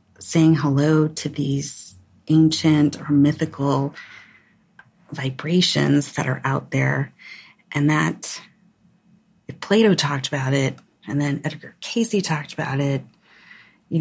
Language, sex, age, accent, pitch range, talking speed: English, female, 30-49, American, 140-170 Hz, 115 wpm